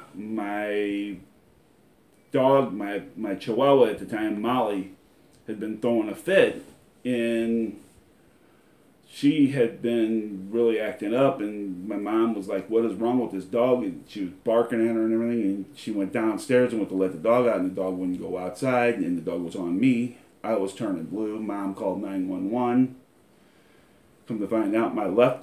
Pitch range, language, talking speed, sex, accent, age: 100-125 Hz, English, 180 wpm, male, American, 40-59